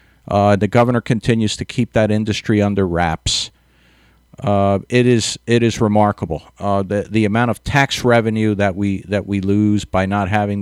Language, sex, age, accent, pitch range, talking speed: English, male, 50-69, American, 95-115 Hz, 175 wpm